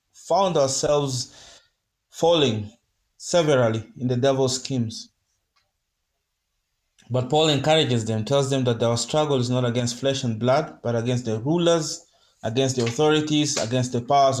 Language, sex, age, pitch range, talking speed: English, male, 30-49, 120-150 Hz, 135 wpm